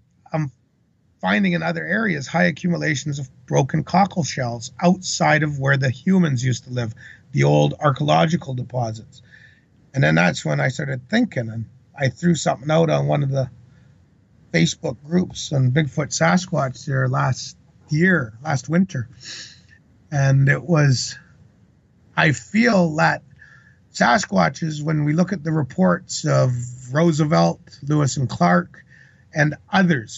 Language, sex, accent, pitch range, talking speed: English, male, American, 130-165 Hz, 135 wpm